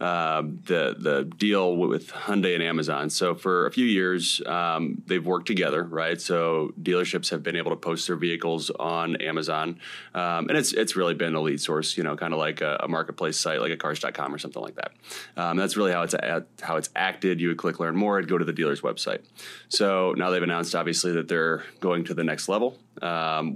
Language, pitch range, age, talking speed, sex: English, 85-90 Hz, 30-49, 220 wpm, male